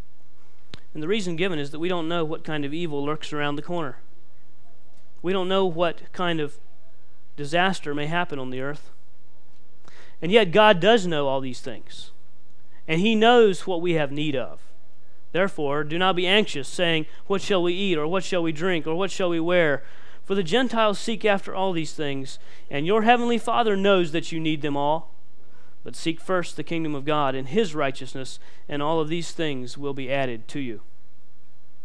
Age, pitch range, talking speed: 40-59, 140-185 Hz, 195 wpm